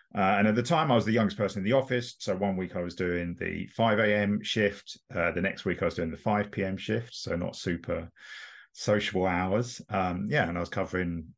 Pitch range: 85-110 Hz